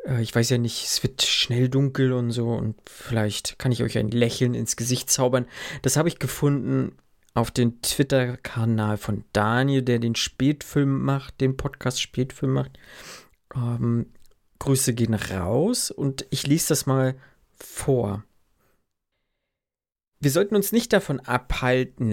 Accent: German